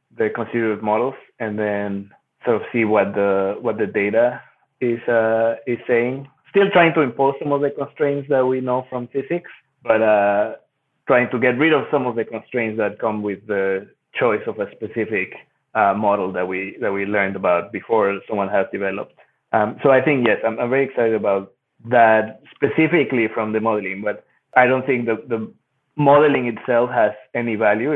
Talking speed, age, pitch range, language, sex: 185 wpm, 20-39, 110-130 Hz, English, male